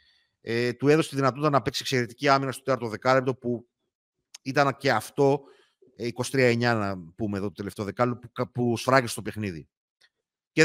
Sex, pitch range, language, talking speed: male, 115-145 Hz, Greek, 160 wpm